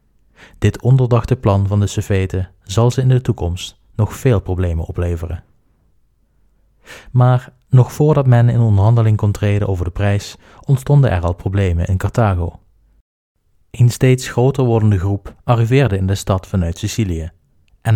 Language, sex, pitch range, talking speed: Dutch, male, 95-120 Hz, 145 wpm